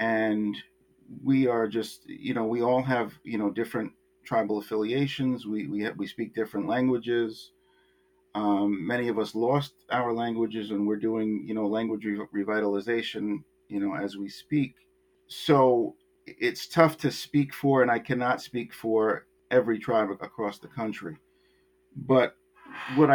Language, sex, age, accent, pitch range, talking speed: English, male, 50-69, American, 100-125 Hz, 150 wpm